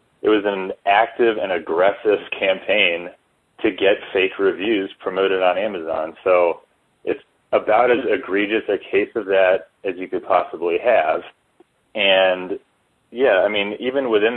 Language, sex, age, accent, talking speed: English, male, 30-49, American, 140 wpm